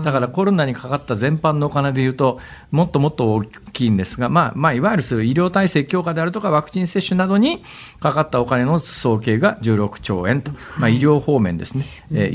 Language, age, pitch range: Japanese, 50-69, 115-160 Hz